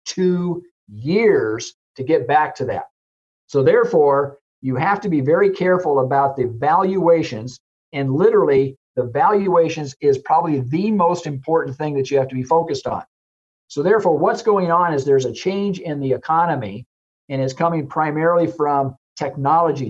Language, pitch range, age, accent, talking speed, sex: English, 130-175 Hz, 50-69, American, 160 wpm, male